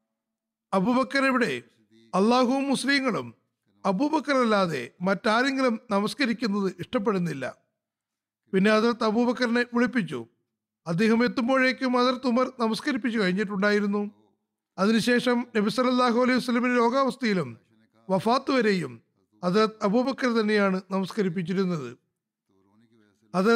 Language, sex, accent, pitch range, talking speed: Malayalam, male, native, 185-250 Hz, 75 wpm